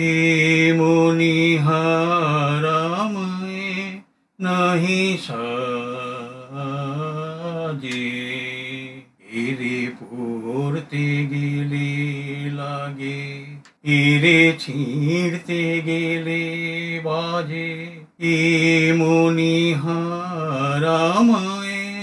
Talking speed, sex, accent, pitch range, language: 35 wpm, male, Indian, 155-215 Hz, English